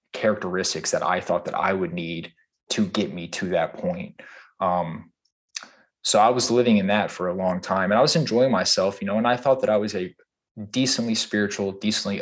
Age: 20-39